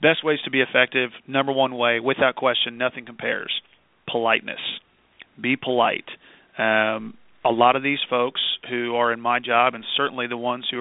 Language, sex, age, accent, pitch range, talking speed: English, male, 40-59, American, 115-125 Hz, 170 wpm